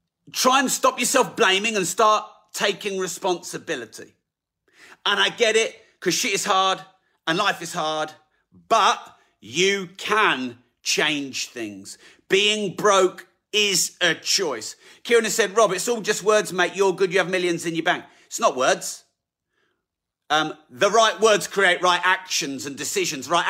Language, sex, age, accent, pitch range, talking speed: English, male, 40-59, British, 155-210 Hz, 155 wpm